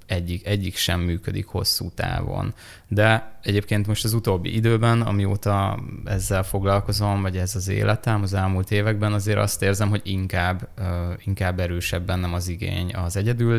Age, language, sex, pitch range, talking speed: 20-39, Hungarian, male, 90-105 Hz, 150 wpm